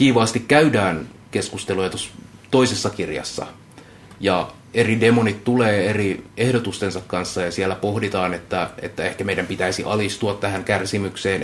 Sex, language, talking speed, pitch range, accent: male, Finnish, 125 wpm, 100-125 Hz, native